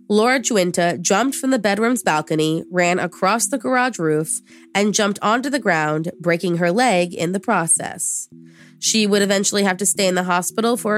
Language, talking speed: English, 180 wpm